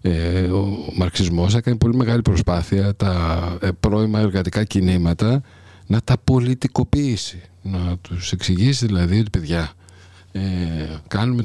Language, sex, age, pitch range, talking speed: Greek, male, 50-69, 90-120 Hz, 110 wpm